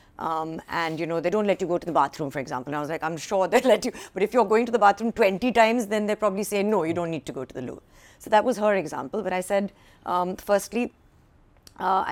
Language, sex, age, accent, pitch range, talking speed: English, female, 50-69, Indian, 155-210 Hz, 275 wpm